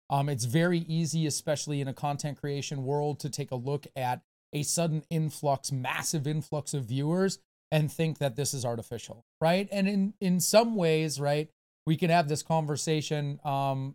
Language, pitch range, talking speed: English, 135-165 Hz, 175 wpm